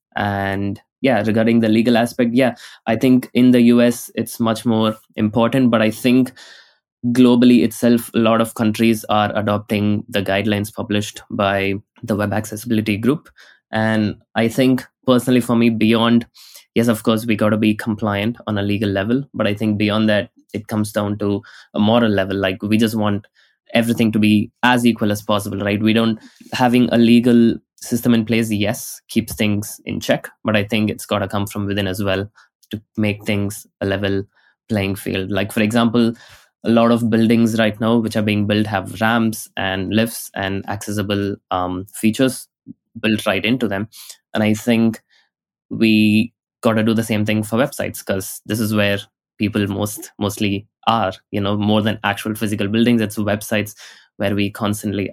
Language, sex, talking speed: English, male, 180 wpm